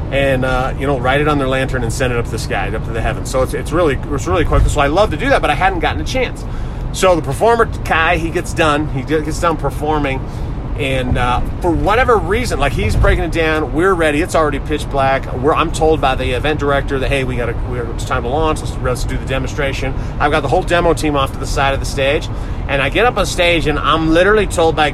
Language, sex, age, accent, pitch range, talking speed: English, male, 30-49, American, 125-155 Hz, 265 wpm